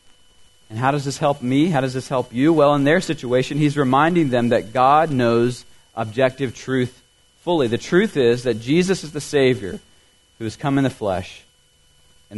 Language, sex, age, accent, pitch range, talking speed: English, male, 40-59, American, 95-135 Hz, 190 wpm